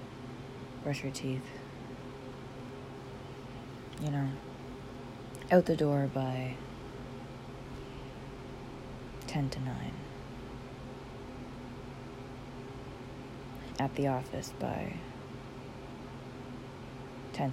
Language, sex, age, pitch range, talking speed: English, female, 30-49, 130-140 Hz, 60 wpm